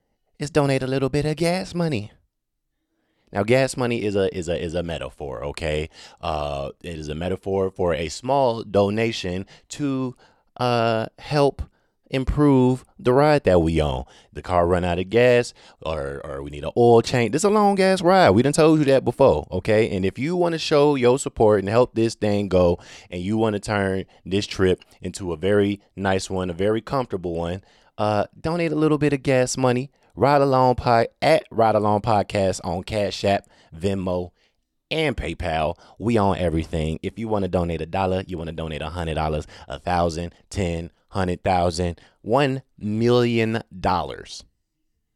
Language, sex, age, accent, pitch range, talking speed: English, male, 20-39, American, 90-130 Hz, 185 wpm